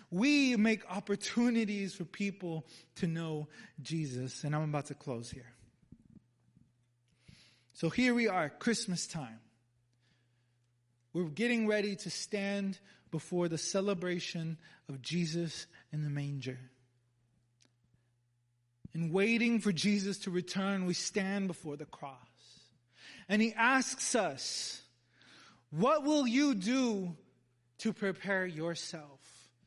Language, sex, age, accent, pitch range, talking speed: English, male, 30-49, American, 130-195 Hz, 110 wpm